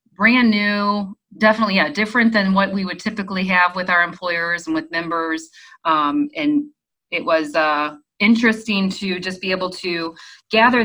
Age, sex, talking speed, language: 30-49, female, 160 wpm, English